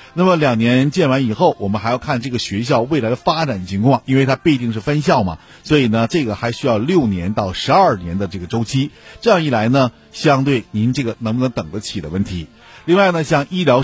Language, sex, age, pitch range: Chinese, male, 50-69, 100-140 Hz